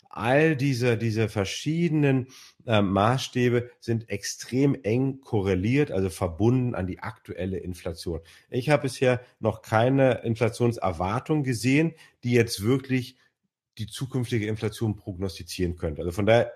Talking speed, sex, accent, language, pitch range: 125 wpm, male, German, German, 95-120 Hz